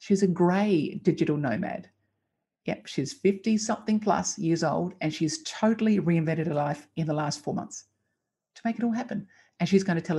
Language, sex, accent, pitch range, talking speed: English, female, Australian, 165-210 Hz, 185 wpm